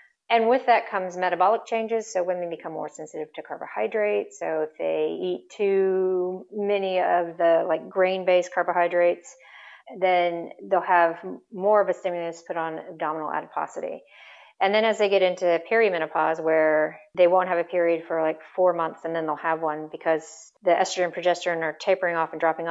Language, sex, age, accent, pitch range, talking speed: English, female, 40-59, American, 165-185 Hz, 175 wpm